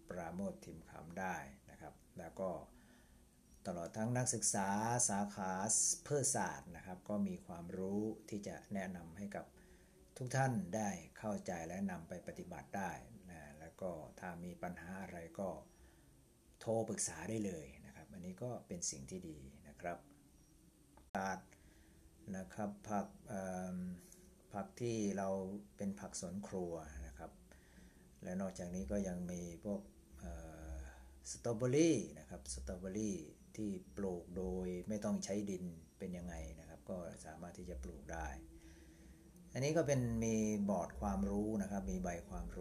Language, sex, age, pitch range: Thai, male, 60-79, 80-100 Hz